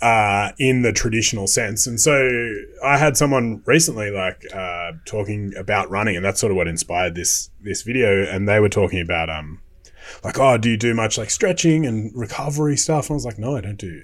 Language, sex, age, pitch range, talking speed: English, male, 20-39, 100-130 Hz, 215 wpm